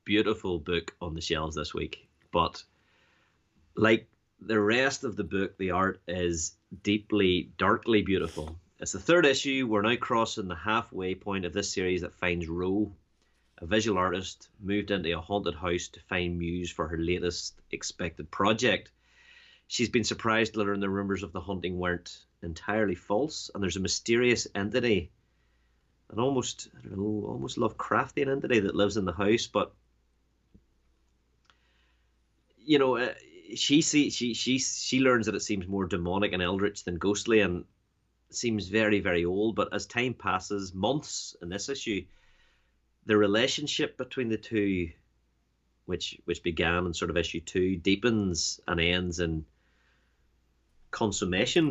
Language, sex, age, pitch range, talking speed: English, male, 30-49, 85-110 Hz, 150 wpm